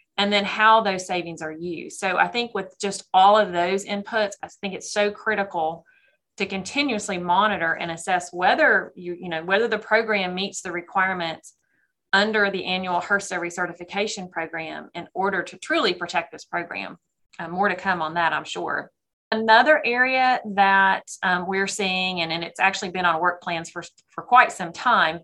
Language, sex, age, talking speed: English, female, 30-49, 180 wpm